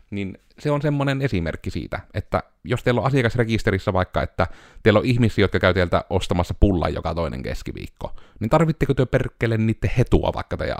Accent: native